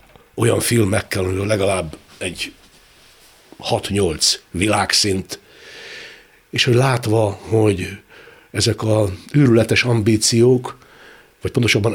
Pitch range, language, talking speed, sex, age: 100-125 Hz, Hungarian, 85 wpm, male, 60-79